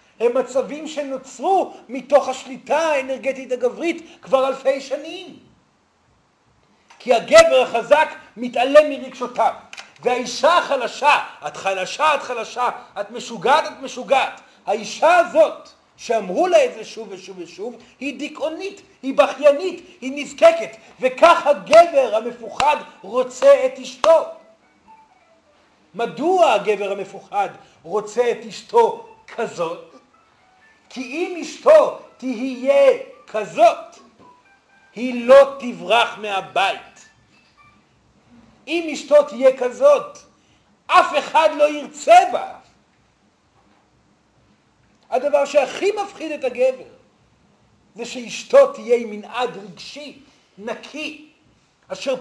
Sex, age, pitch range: male, 40-59, 240-305 Hz